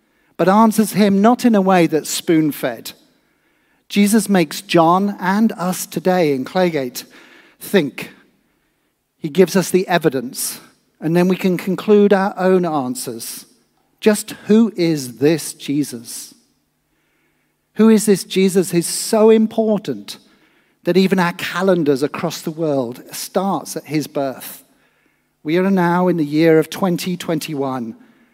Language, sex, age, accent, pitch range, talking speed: English, male, 50-69, British, 150-205 Hz, 135 wpm